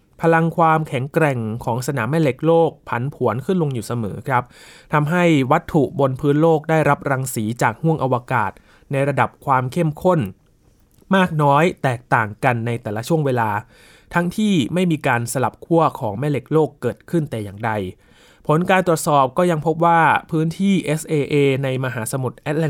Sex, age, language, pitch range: male, 20-39, Thai, 120-155 Hz